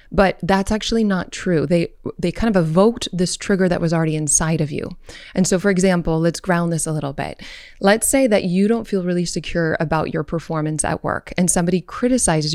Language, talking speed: English, 210 wpm